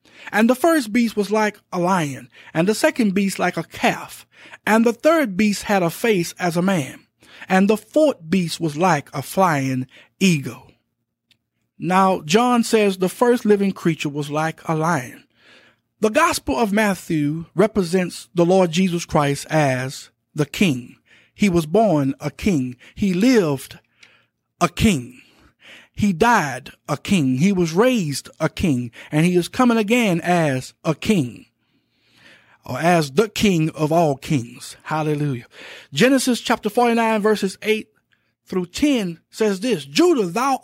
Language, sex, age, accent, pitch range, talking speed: English, male, 50-69, American, 160-230 Hz, 150 wpm